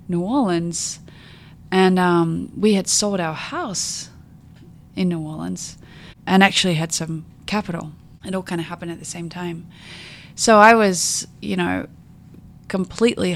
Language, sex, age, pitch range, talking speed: English, female, 30-49, 170-190 Hz, 145 wpm